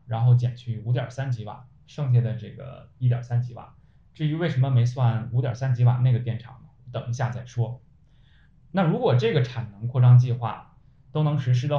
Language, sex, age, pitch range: Chinese, male, 20-39, 120-135 Hz